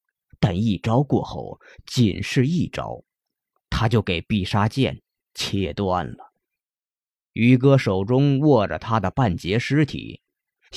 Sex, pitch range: male, 100-145 Hz